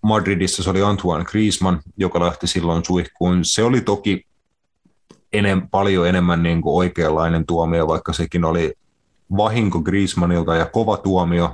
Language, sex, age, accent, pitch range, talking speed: Finnish, male, 30-49, native, 85-105 Hz, 140 wpm